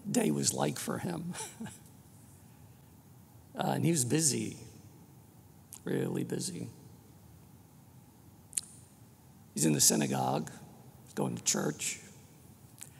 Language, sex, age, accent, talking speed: English, male, 60-79, American, 90 wpm